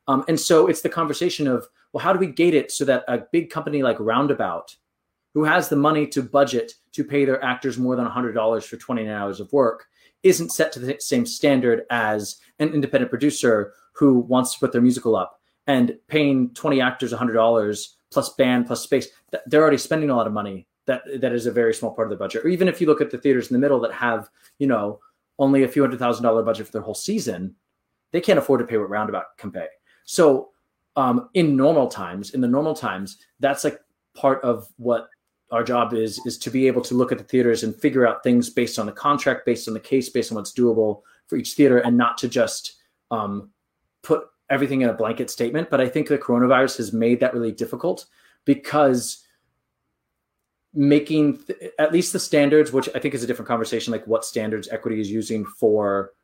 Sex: male